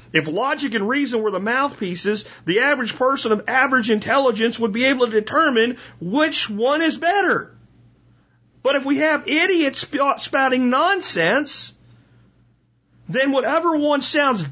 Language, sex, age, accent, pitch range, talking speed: English, male, 40-59, American, 205-290 Hz, 135 wpm